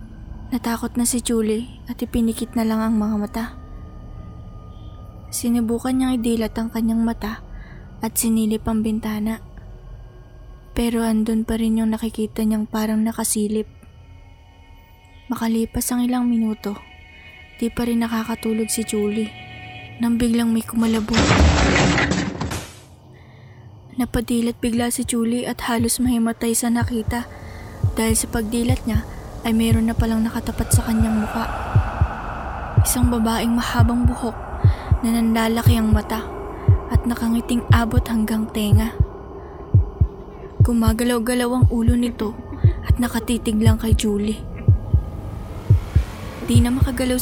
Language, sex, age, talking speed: Filipino, female, 20-39, 115 wpm